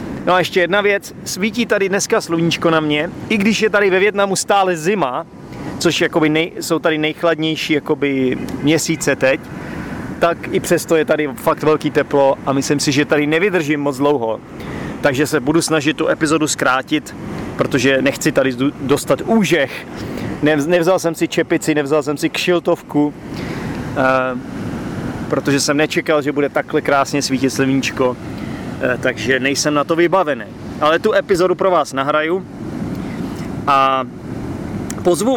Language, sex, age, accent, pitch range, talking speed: Czech, male, 30-49, native, 145-170 Hz, 150 wpm